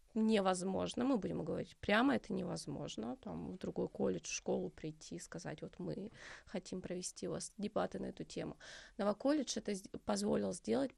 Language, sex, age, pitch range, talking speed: Russian, female, 20-39, 175-215 Hz, 165 wpm